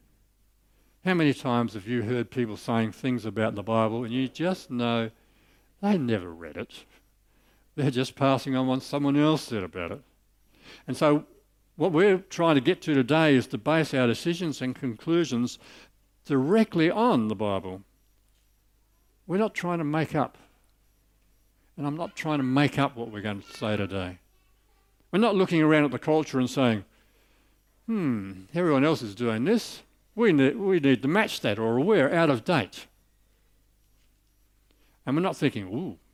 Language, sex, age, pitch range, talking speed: English, male, 60-79, 105-155 Hz, 170 wpm